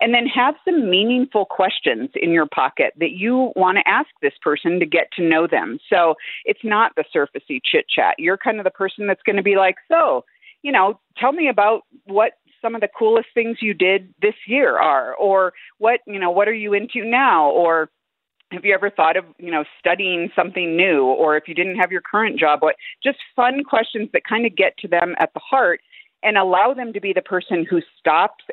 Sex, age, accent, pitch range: female, 50-69, American, 170-230 Hz